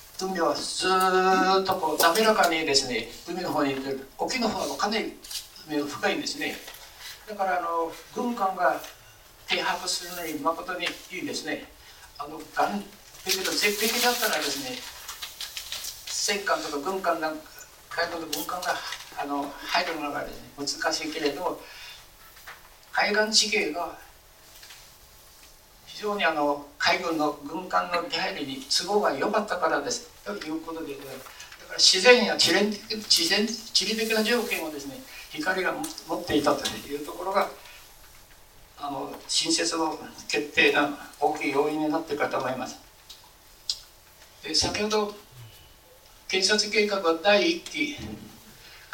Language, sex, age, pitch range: Japanese, male, 60-79, 145-205 Hz